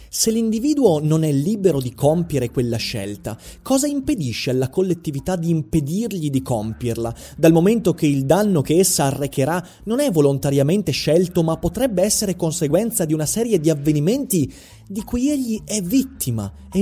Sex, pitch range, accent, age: male, 140-220 Hz, native, 30-49